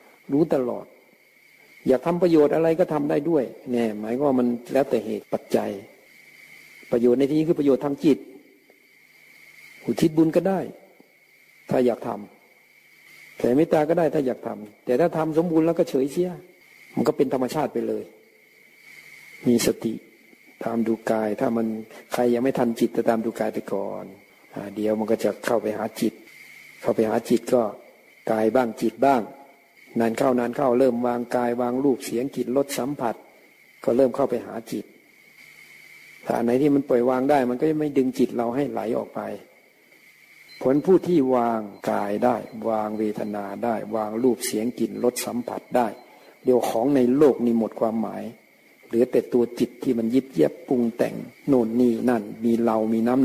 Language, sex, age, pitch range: Thai, male, 60-79, 115-140 Hz